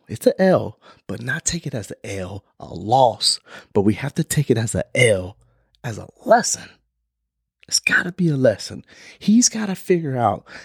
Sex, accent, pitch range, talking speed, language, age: male, American, 105-145 Hz, 195 wpm, English, 30-49